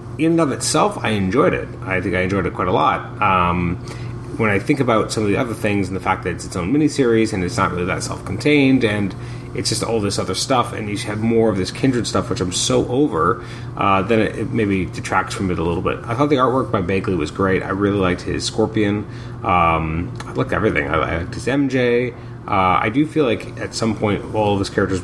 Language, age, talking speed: English, 30-49, 245 wpm